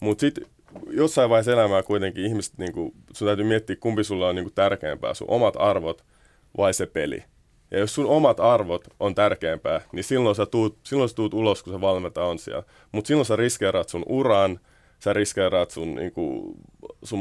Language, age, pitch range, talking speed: Finnish, 20-39, 95-115 Hz, 170 wpm